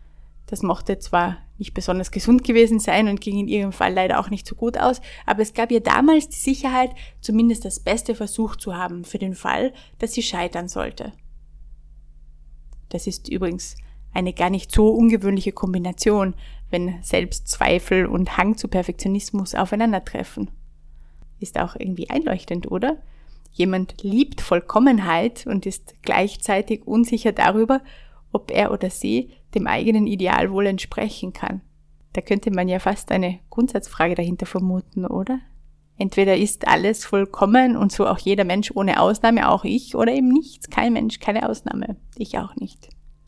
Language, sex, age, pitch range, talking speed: German, female, 20-39, 180-225 Hz, 155 wpm